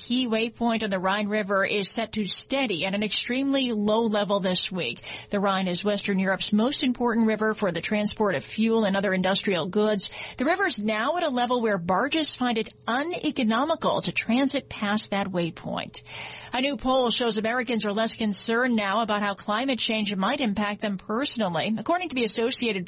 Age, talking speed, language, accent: 40-59, 190 wpm, English, American